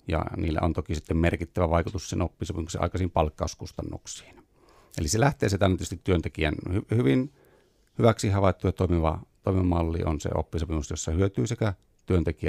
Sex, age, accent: male, 30-49, native